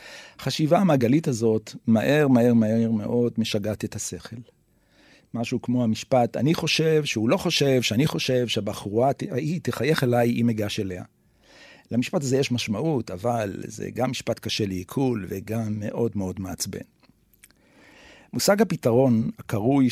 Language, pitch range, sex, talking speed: Hebrew, 110-135 Hz, male, 135 wpm